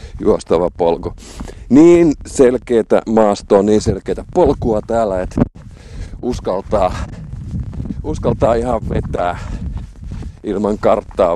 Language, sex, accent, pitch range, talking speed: Finnish, male, native, 90-120 Hz, 85 wpm